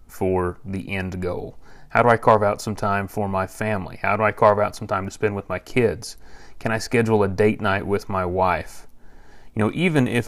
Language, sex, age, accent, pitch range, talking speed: English, male, 30-49, American, 95-115 Hz, 230 wpm